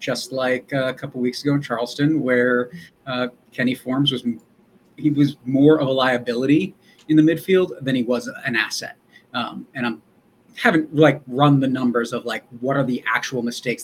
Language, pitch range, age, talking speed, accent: English, 125-150 Hz, 30-49, 185 wpm, American